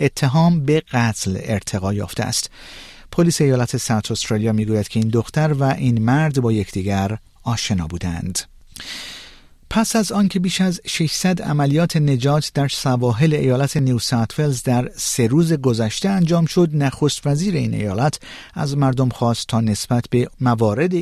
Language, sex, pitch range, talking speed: Persian, male, 110-145 Hz, 145 wpm